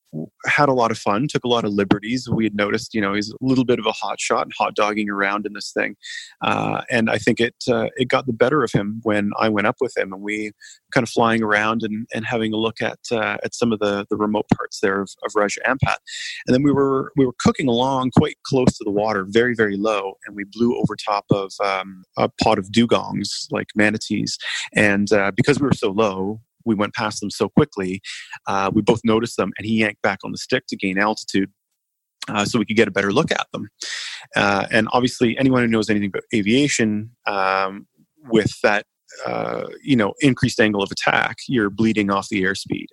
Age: 30-49